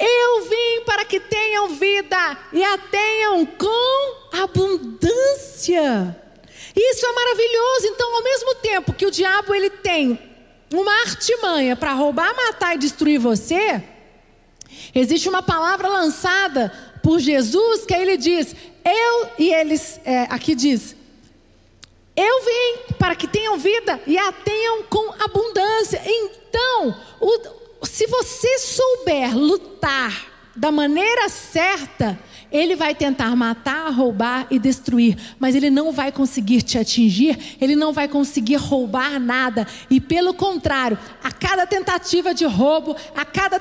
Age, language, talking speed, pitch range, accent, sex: 40-59, Portuguese, 130 wpm, 275-405 Hz, Brazilian, female